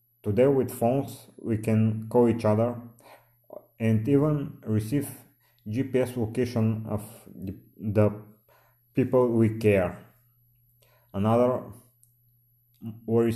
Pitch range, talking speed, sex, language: 110-120 Hz, 90 wpm, male, English